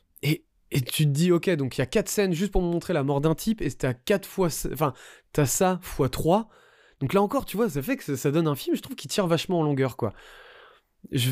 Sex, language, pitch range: male, French, 120-165 Hz